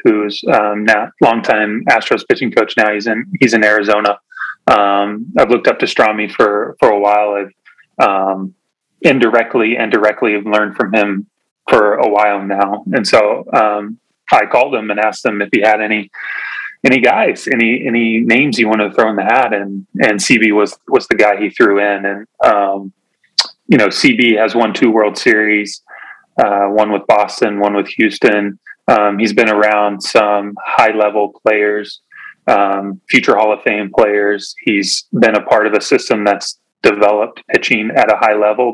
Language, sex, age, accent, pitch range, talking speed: English, male, 30-49, American, 100-110 Hz, 180 wpm